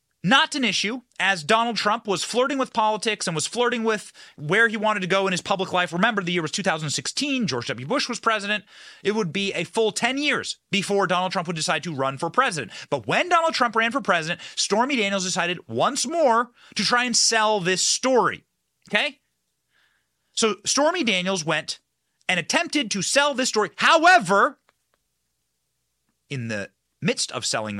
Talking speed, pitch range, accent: 180 wpm, 180-260 Hz, American